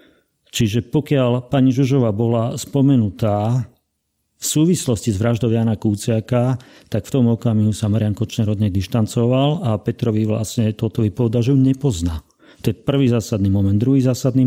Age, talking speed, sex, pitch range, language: 40-59, 145 wpm, male, 110-130 Hz, Slovak